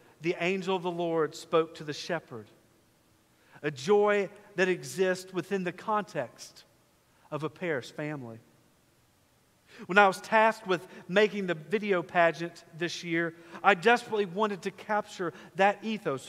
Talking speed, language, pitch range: 140 wpm, English, 150-190 Hz